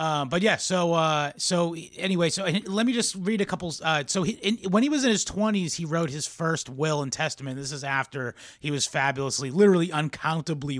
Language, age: English, 30-49